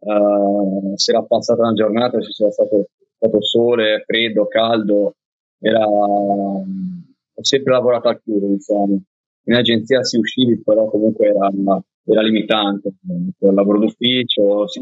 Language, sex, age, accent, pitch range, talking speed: Italian, male, 20-39, native, 100-115 Hz, 140 wpm